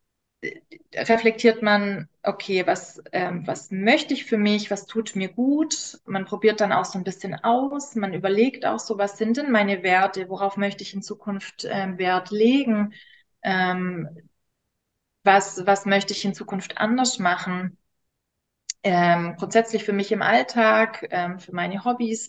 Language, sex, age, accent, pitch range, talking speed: German, female, 30-49, German, 200-245 Hz, 155 wpm